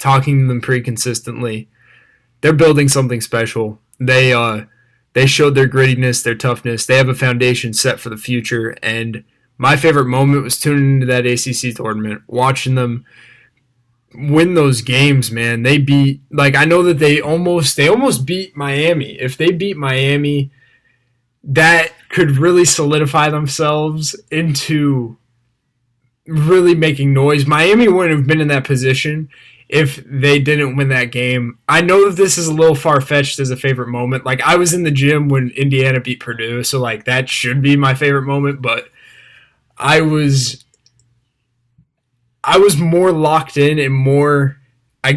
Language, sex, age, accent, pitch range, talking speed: English, male, 20-39, American, 125-150 Hz, 160 wpm